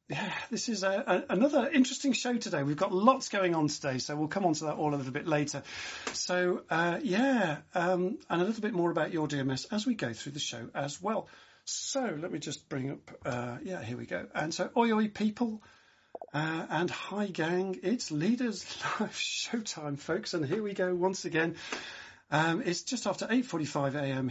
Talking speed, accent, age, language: 200 wpm, British, 40-59, English